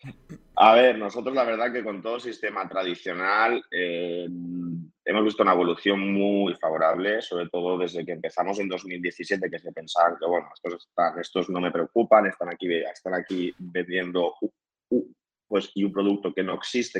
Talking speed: 170 wpm